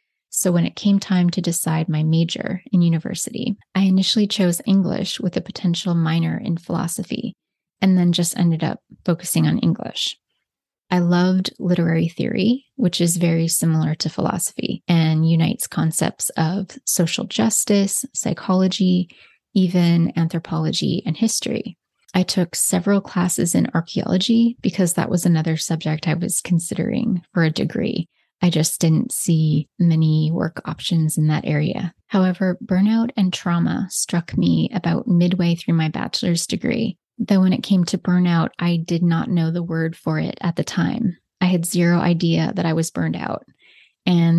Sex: female